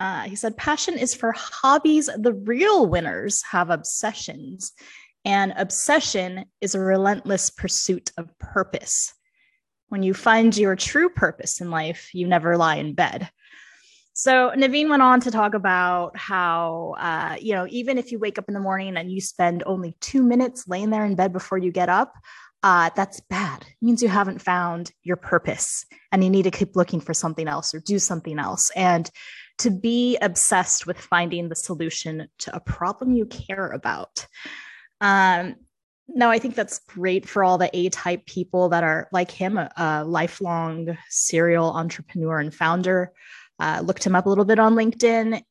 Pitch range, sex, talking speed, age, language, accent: 170-220 Hz, female, 175 wpm, 20-39, English, American